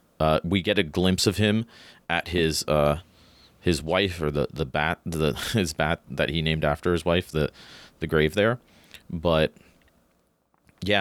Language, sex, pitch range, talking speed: English, male, 75-90 Hz, 170 wpm